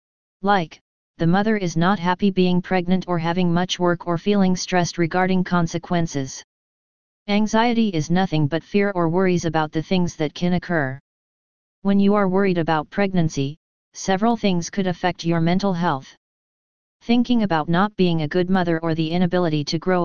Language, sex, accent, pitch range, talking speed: English, female, American, 165-200 Hz, 165 wpm